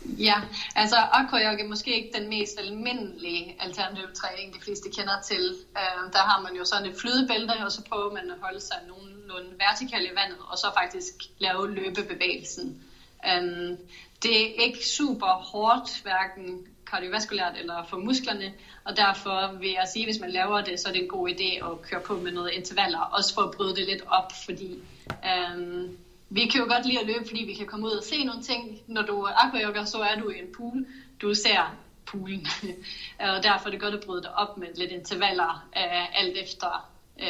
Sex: female